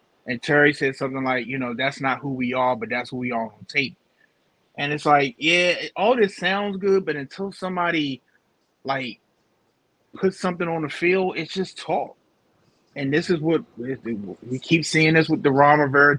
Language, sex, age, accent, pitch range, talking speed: English, male, 30-49, American, 135-185 Hz, 190 wpm